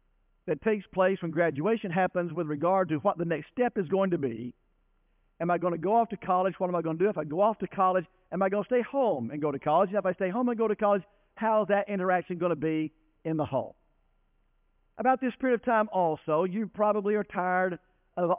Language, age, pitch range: English, 50-69, 140-210 Hz